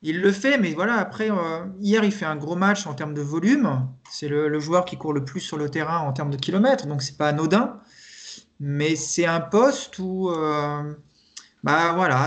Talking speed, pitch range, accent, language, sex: 215 wpm, 155-200 Hz, French, French, male